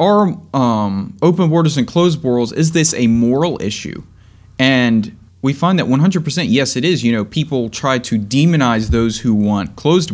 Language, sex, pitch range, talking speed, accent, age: English, male, 110-155 Hz, 180 wpm, American, 30-49